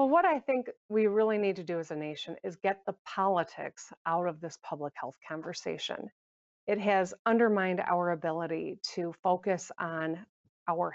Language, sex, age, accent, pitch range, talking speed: English, female, 40-59, American, 170-220 Hz, 170 wpm